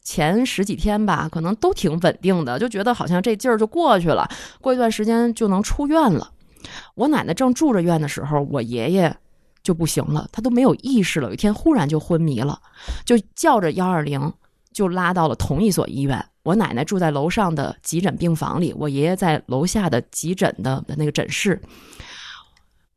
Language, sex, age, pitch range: Chinese, female, 20-39, 160-220 Hz